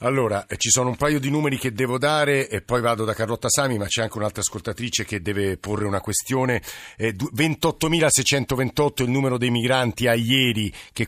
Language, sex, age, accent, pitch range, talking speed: Italian, male, 50-69, native, 115-135 Hz, 185 wpm